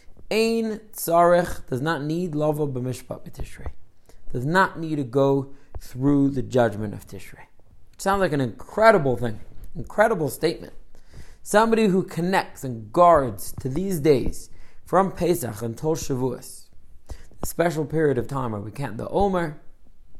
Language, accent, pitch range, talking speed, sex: English, American, 120-170 Hz, 140 wpm, male